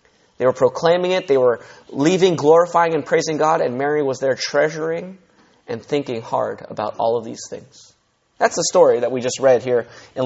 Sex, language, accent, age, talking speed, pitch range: male, English, American, 20-39, 195 wpm, 135-200 Hz